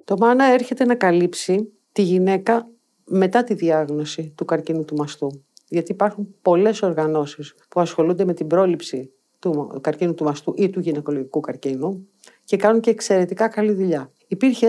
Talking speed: 155 wpm